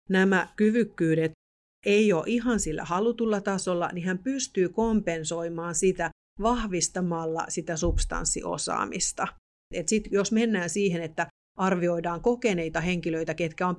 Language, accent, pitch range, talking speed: Finnish, native, 170-205 Hz, 120 wpm